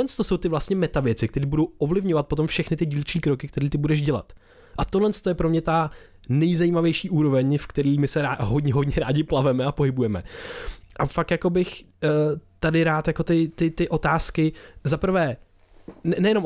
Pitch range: 115-155 Hz